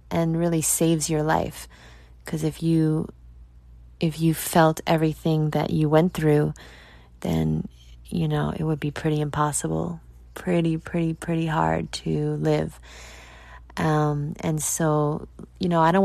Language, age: English, 20-39